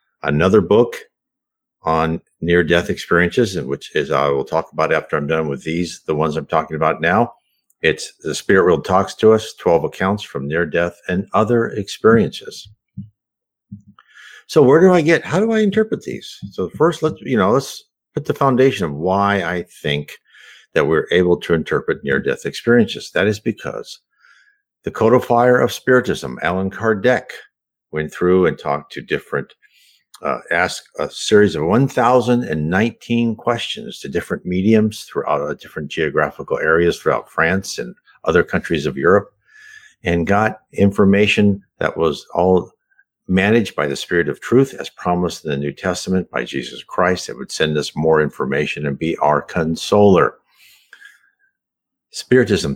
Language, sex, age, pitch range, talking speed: English, male, 50-69, 85-130 Hz, 155 wpm